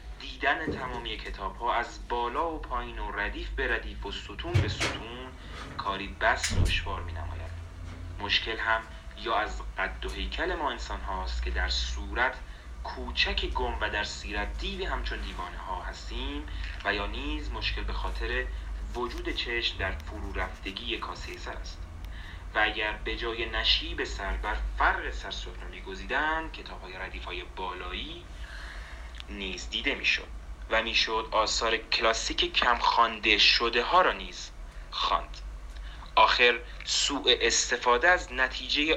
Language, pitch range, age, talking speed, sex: Persian, 75-115 Hz, 30-49, 145 wpm, male